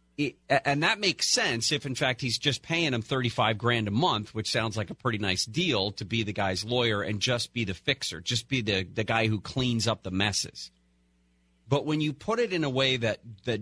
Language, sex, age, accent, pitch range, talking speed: English, male, 40-59, American, 105-150 Hz, 235 wpm